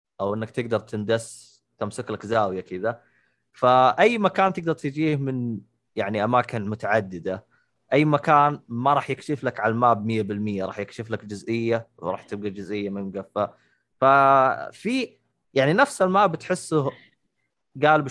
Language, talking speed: Arabic, 135 wpm